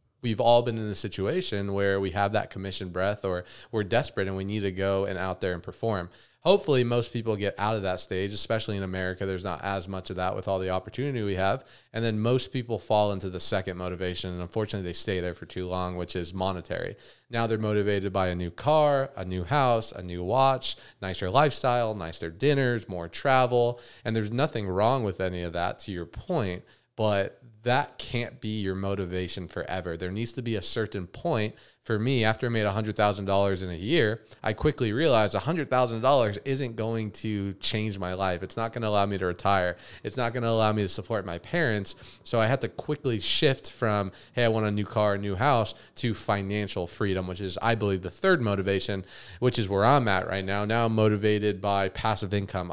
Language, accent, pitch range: English, American, 95-120 Hz